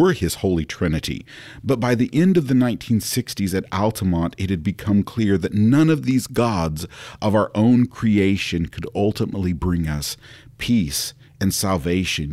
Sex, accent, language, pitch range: male, American, English, 95-125 Hz